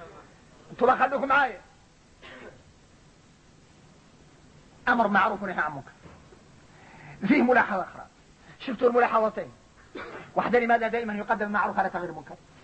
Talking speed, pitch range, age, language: 105 wpm, 190-255 Hz, 40-59, Arabic